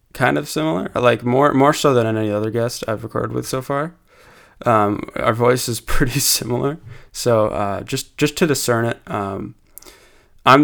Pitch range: 105-130 Hz